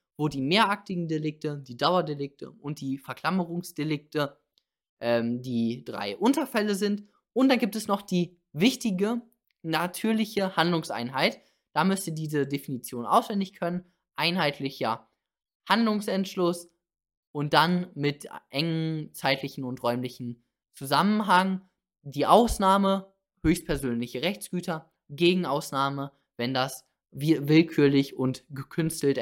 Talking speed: 105 wpm